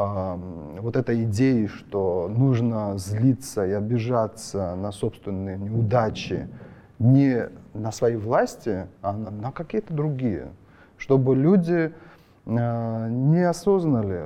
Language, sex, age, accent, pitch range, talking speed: Russian, male, 30-49, native, 105-135 Hz, 95 wpm